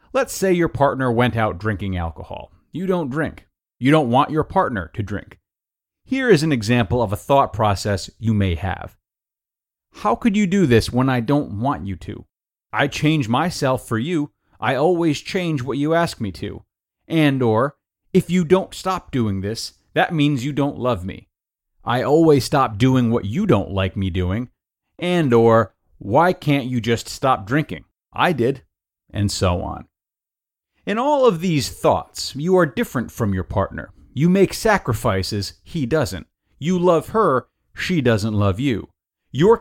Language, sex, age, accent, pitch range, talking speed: English, male, 30-49, American, 100-160 Hz, 175 wpm